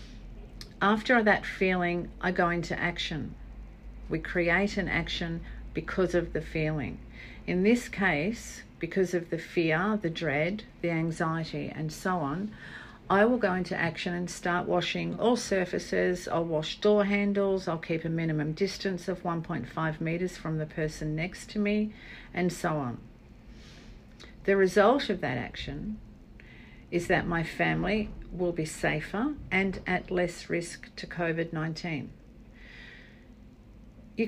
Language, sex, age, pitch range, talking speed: English, female, 50-69, 165-195 Hz, 140 wpm